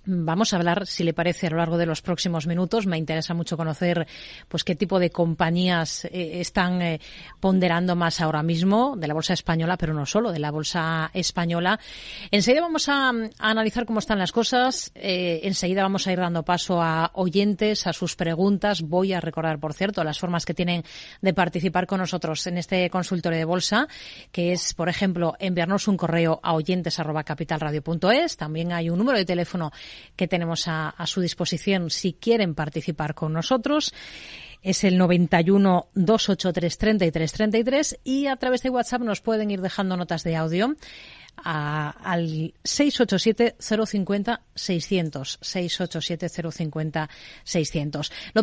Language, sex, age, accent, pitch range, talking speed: Spanish, female, 30-49, Spanish, 165-215 Hz, 155 wpm